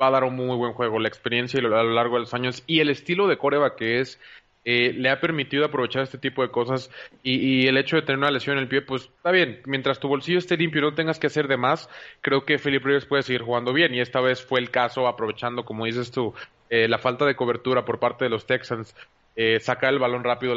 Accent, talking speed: Mexican, 265 wpm